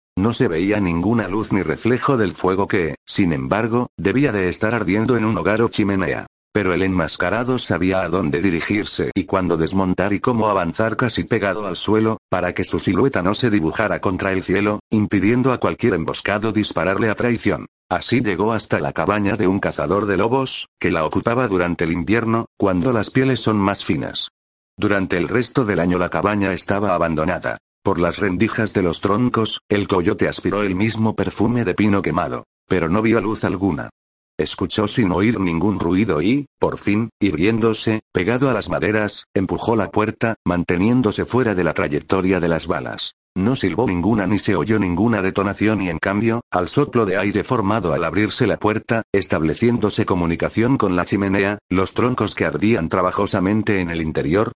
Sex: male